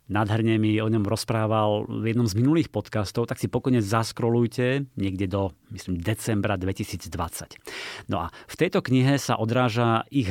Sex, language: male, Slovak